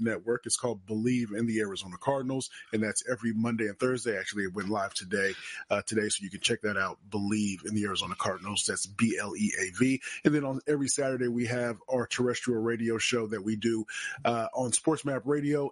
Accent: American